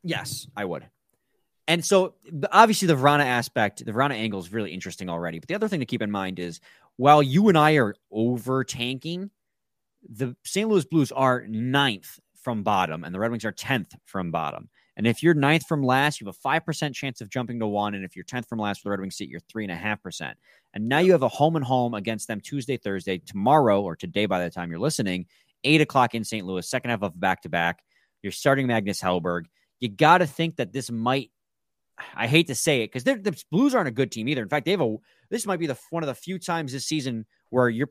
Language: English